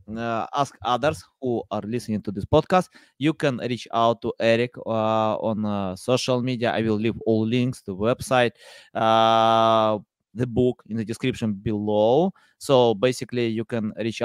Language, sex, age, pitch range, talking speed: English, male, 20-39, 110-155 Hz, 165 wpm